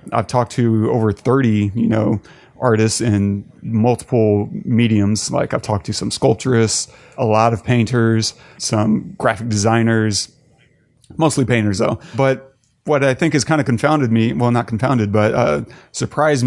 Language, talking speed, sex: English, 155 wpm, male